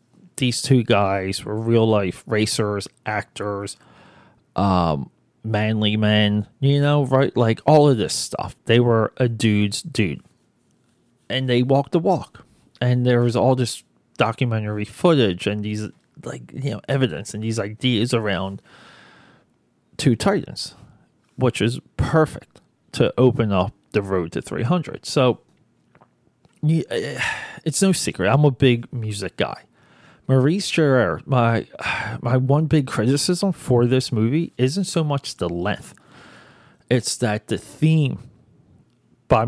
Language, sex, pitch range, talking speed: English, male, 105-135 Hz, 130 wpm